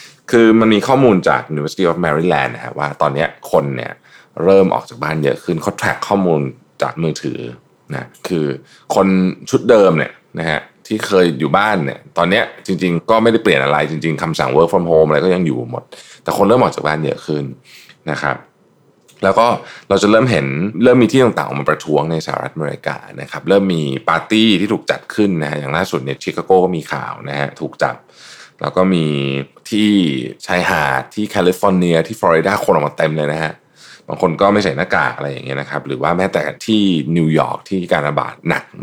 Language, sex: Thai, male